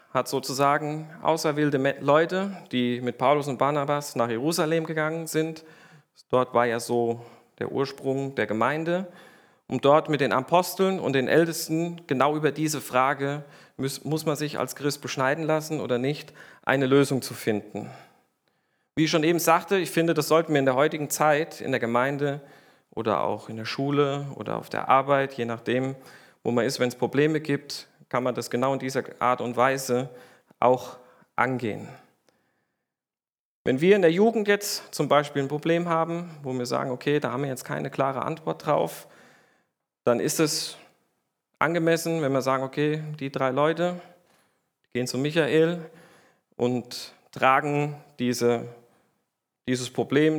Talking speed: 160 wpm